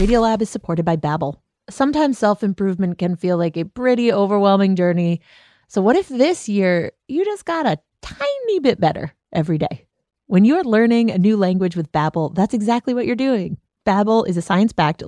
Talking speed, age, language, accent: 180 wpm, 30-49, English, American